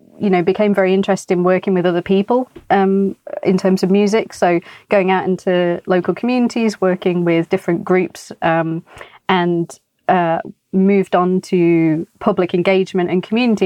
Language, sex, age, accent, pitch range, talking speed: English, female, 30-49, British, 175-205 Hz, 155 wpm